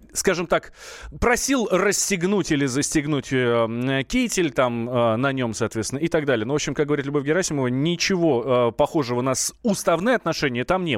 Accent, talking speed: native, 155 wpm